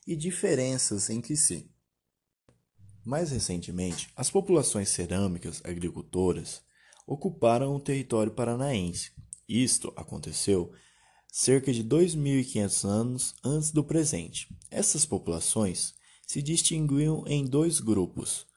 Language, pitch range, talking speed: Portuguese, 100-155 Hz, 95 wpm